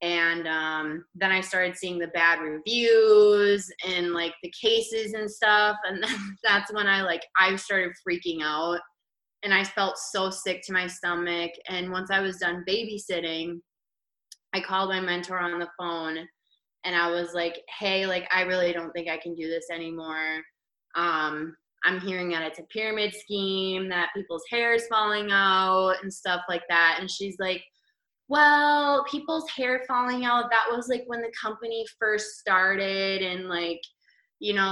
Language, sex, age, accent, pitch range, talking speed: English, female, 20-39, American, 175-215 Hz, 170 wpm